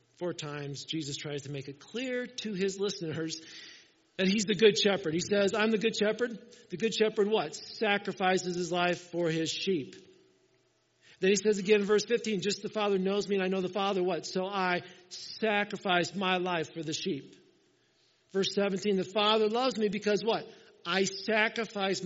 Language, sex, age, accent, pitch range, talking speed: English, male, 50-69, American, 175-215 Hz, 185 wpm